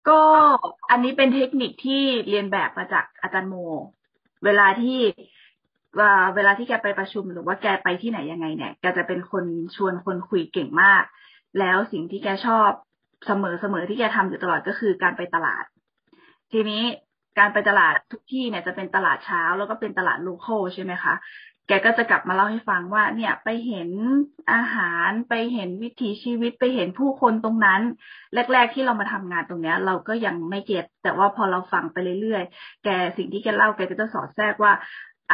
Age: 20-39